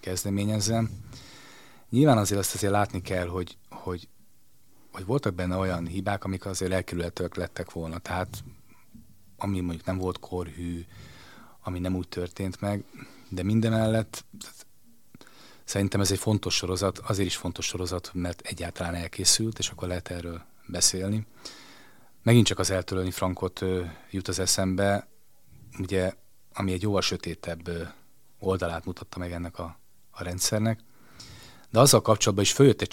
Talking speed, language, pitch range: 140 wpm, Hungarian, 90-110 Hz